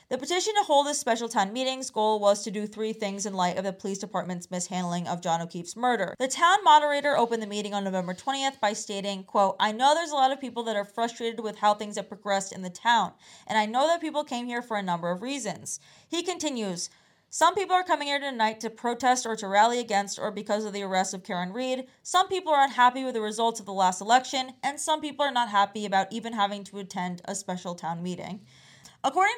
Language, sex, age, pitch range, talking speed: English, female, 20-39, 200-265 Hz, 235 wpm